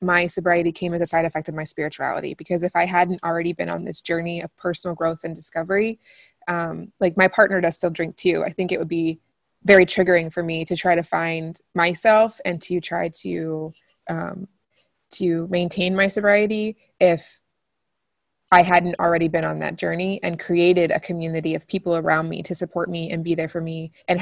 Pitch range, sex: 170-190 Hz, female